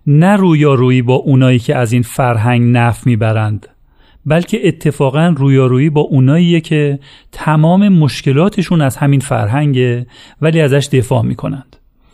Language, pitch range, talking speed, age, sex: Persian, 120-145 Hz, 125 wpm, 40-59, male